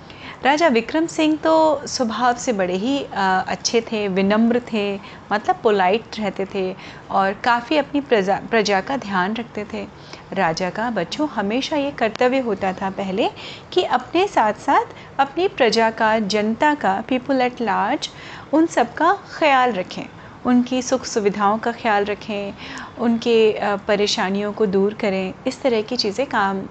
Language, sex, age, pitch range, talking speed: Hindi, female, 30-49, 210-290 Hz, 150 wpm